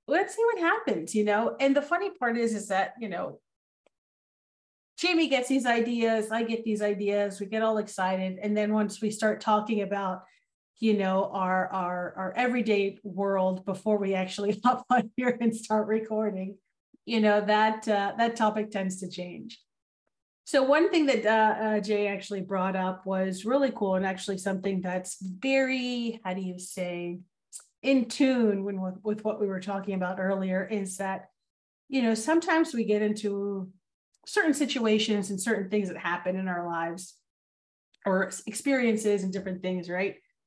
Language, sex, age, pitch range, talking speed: English, female, 30-49, 190-235 Hz, 170 wpm